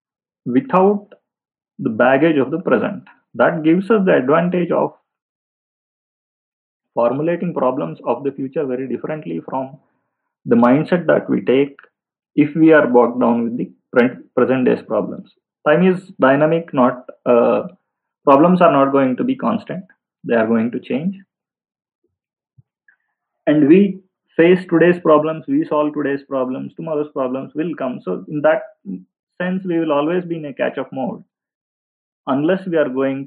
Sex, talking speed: male, 145 wpm